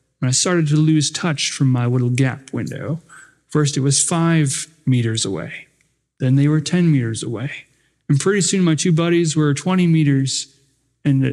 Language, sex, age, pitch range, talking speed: English, male, 30-49, 140-165 Hz, 175 wpm